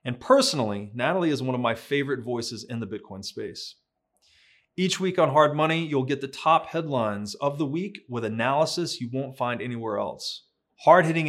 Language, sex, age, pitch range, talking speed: English, male, 30-49, 115-150 Hz, 180 wpm